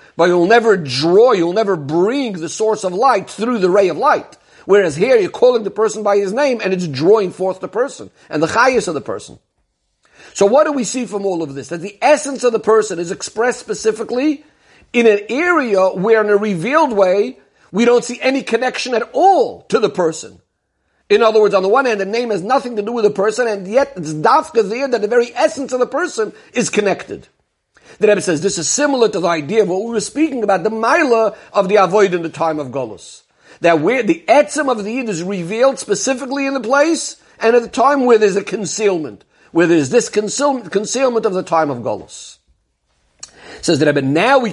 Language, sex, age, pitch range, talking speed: English, male, 50-69, 180-250 Hz, 220 wpm